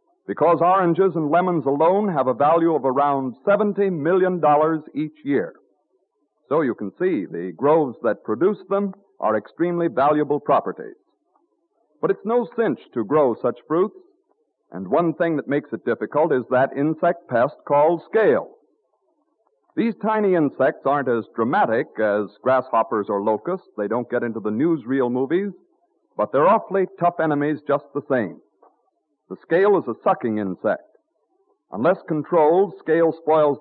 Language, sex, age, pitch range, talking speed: English, male, 50-69, 135-200 Hz, 150 wpm